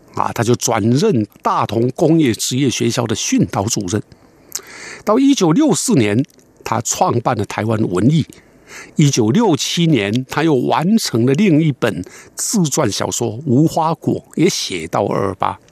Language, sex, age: Chinese, male, 60-79